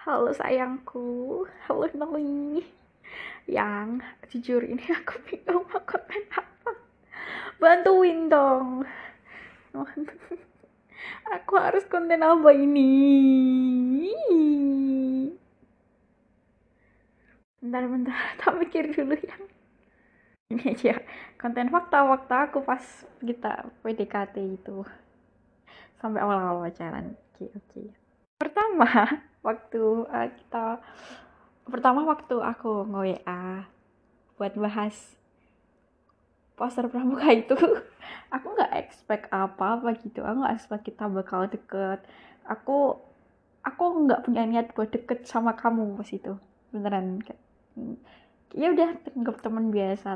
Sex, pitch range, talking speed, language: female, 210-300 Hz, 95 wpm, Indonesian